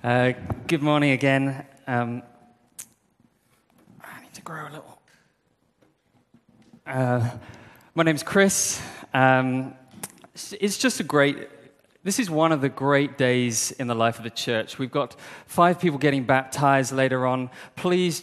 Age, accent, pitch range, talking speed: 20-39, British, 120-150 Hz, 140 wpm